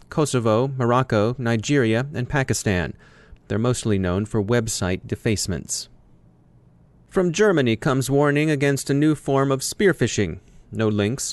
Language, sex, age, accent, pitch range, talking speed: English, male, 30-49, American, 110-135 Hz, 125 wpm